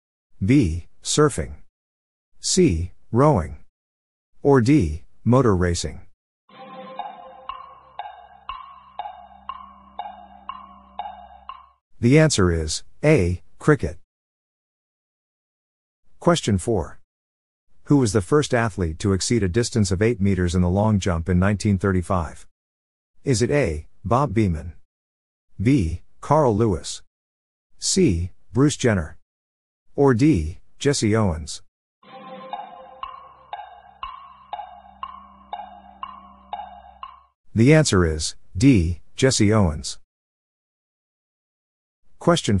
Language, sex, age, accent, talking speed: English, male, 50-69, American, 75 wpm